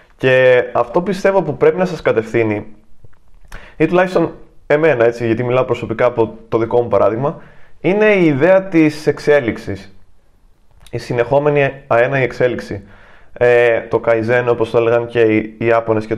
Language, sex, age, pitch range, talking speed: Greek, male, 20-39, 110-140 Hz, 150 wpm